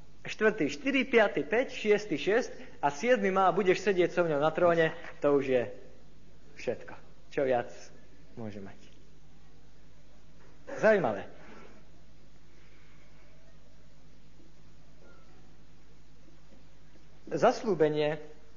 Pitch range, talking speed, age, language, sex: 130-195 Hz, 85 wpm, 50-69, Slovak, male